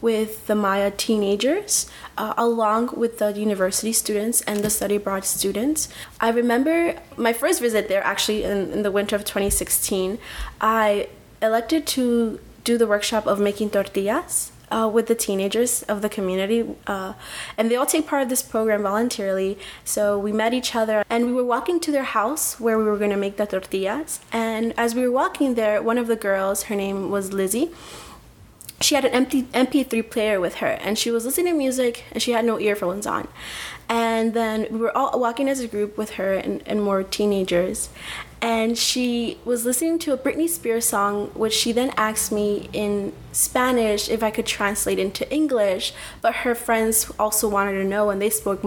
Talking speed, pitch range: 190 wpm, 200-235 Hz